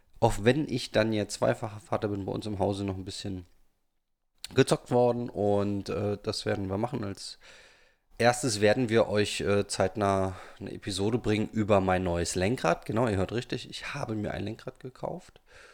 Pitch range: 100-120 Hz